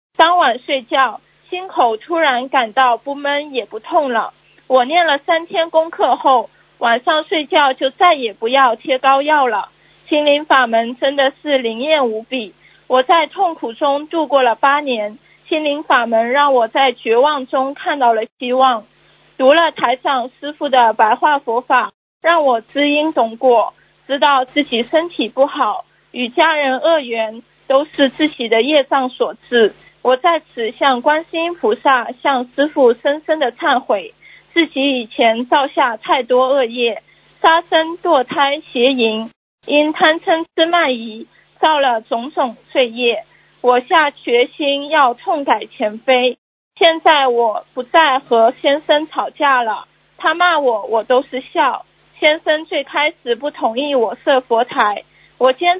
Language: Chinese